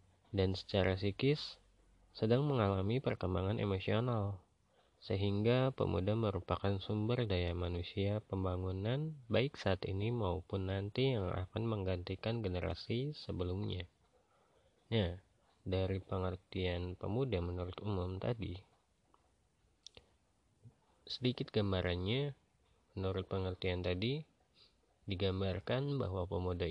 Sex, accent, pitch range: male, native, 95-115 Hz